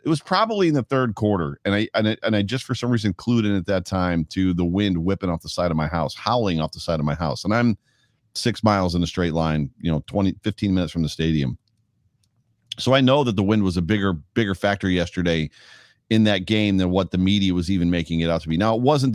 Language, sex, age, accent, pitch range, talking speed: English, male, 40-59, American, 90-120 Hz, 265 wpm